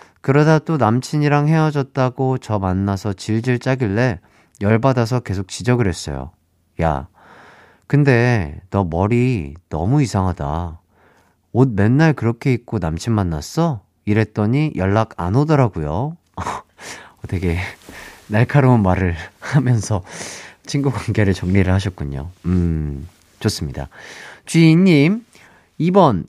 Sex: male